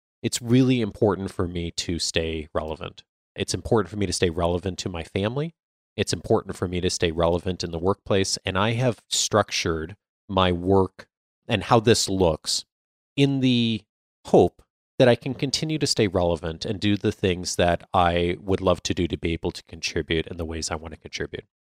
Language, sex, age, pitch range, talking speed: English, male, 30-49, 90-115 Hz, 195 wpm